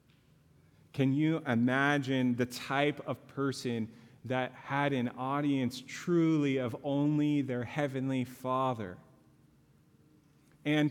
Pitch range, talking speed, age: 125-155 Hz, 100 wpm, 30-49